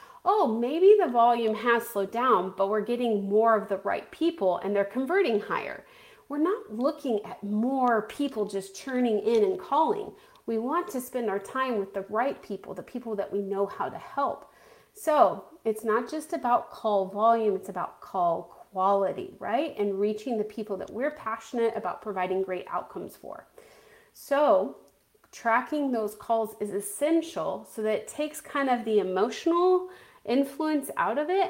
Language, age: English, 30-49